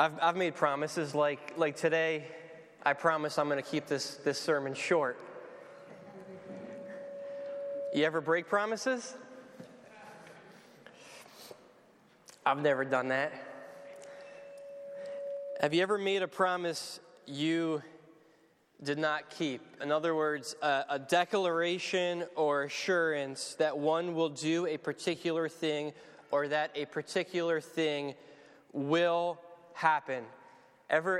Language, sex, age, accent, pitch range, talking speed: English, male, 20-39, American, 155-190 Hz, 110 wpm